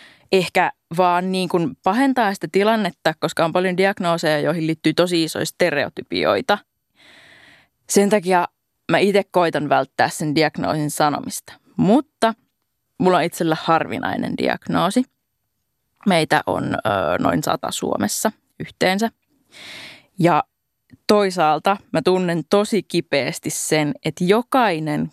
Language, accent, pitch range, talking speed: Finnish, native, 150-190 Hz, 110 wpm